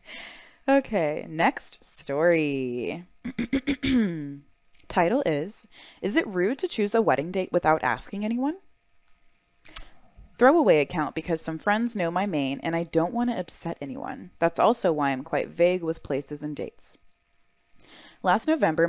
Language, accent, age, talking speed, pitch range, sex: English, American, 20-39, 135 wpm, 155-215 Hz, female